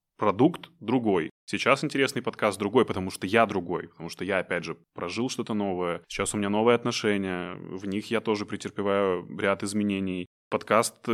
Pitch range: 95-110 Hz